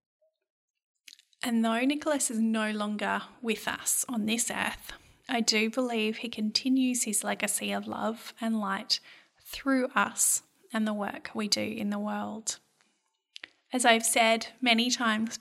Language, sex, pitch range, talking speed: English, female, 210-240 Hz, 145 wpm